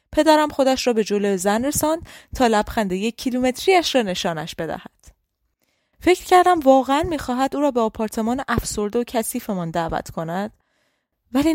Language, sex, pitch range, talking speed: Persian, female, 215-285 Hz, 140 wpm